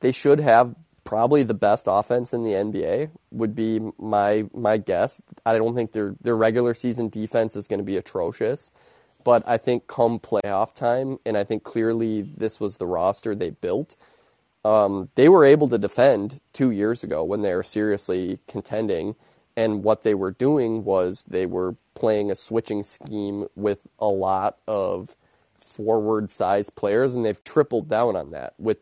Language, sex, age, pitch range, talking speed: English, male, 20-39, 100-120 Hz, 175 wpm